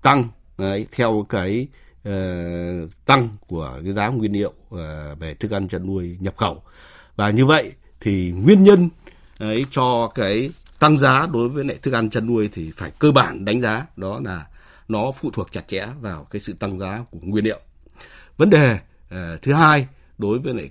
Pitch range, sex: 100-130 Hz, male